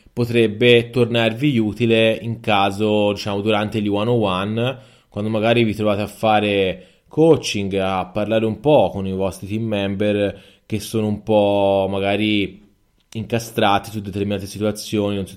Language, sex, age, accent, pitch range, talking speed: Italian, male, 20-39, native, 100-115 Hz, 140 wpm